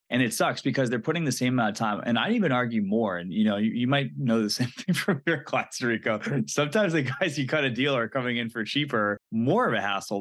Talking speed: 270 wpm